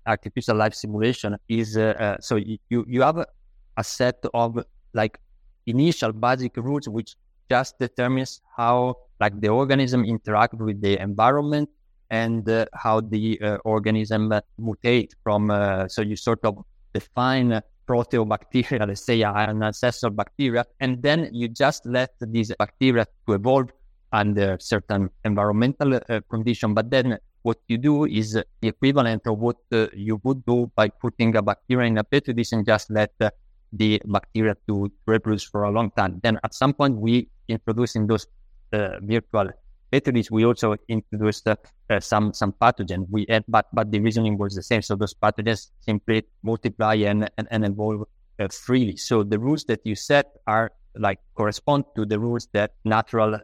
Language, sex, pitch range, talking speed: English, male, 105-120 Hz, 165 wpm